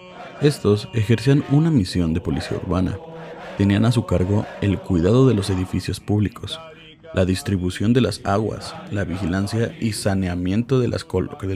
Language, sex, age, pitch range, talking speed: English, male, 30-49, 100-130 Hz, 140 wpm